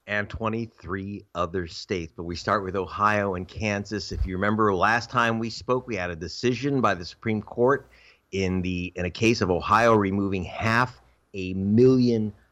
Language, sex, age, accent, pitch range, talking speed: English, male, 50-69, American, 100-135 Hz, 175 wpm